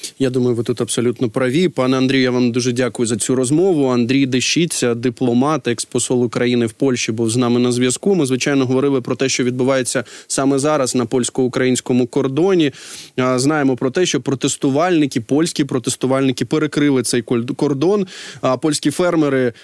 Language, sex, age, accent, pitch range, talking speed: Ukrainian, male, 20-39, native, 130-155 Hz, 155 wpm